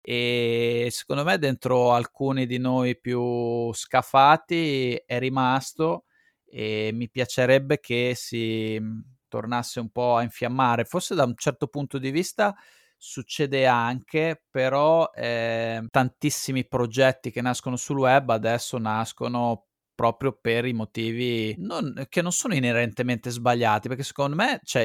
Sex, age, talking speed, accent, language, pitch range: male, 30-49, 125 wpm, native, Italian, 120-150 Hz